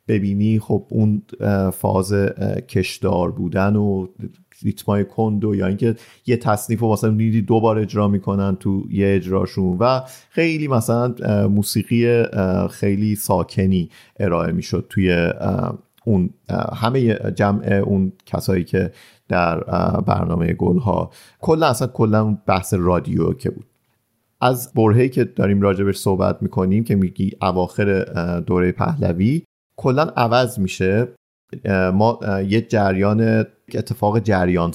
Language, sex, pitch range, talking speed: Persian, male, 95-110 Hz, 120 wpm